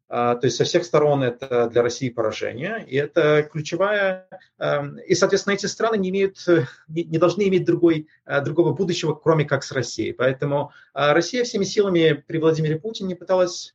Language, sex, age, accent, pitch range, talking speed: Russian, male, 30-49, native, 120-175 Hz, 155 wpm